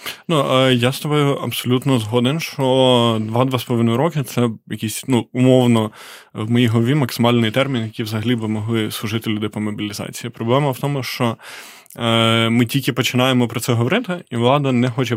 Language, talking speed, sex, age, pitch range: Ukrainian, 160 wpm, male, 20-39, 110-125 Hz